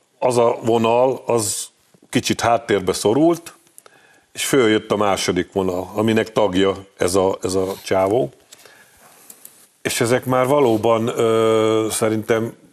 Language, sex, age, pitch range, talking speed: Hungarian, male, 50-69, 95-115 Hz, 110 wpm